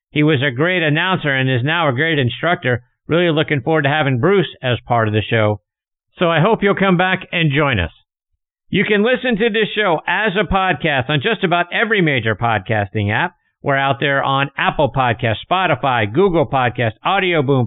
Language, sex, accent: English, male, American